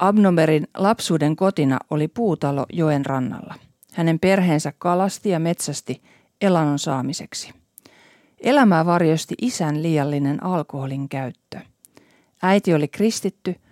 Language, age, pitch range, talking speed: Finnish, 40-59, 145-195 Hz, 100 wpm